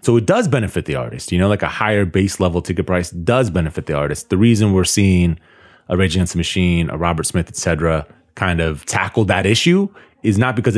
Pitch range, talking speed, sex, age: 85-110 Hz, 230 wpm, male, 30-49